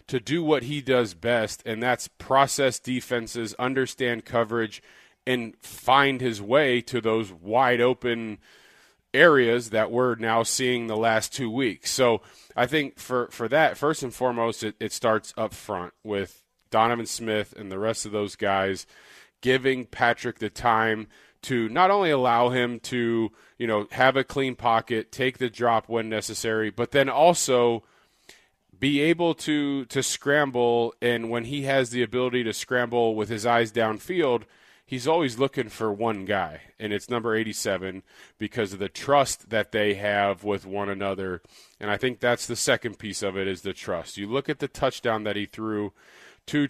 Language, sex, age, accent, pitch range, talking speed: English, male, 30-49, American, 110-130 Hz, 175 wpm